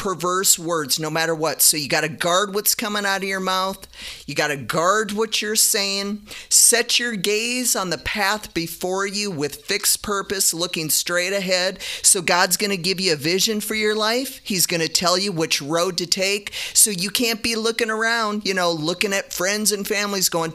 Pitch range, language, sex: 165-215 Hz, English, male